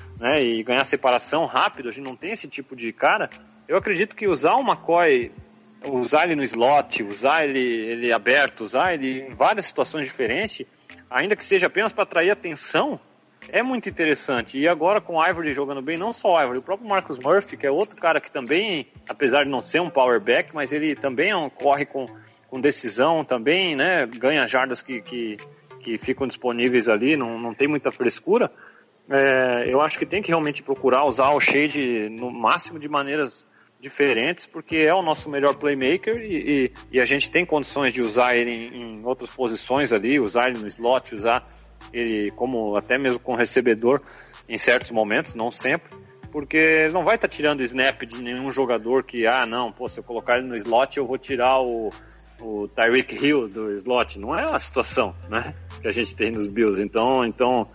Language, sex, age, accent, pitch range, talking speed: Portuguese, male, 40-59, Brazilian, 115-145 Hz, 195 wpm